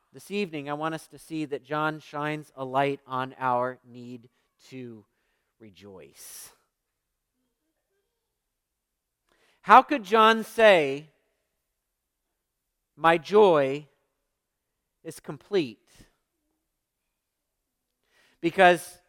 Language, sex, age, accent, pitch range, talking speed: English, male, 40-59, American, 170-235 Hz, 80 wpm